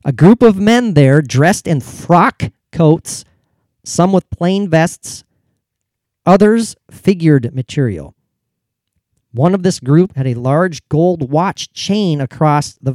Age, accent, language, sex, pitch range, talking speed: 40-59, American, English, male, 130-175 Hz, 130 wpm